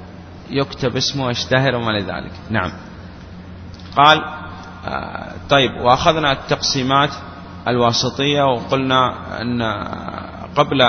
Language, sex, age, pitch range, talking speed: Arabic, male, 30-49, 90-140 Hz, 75 wpm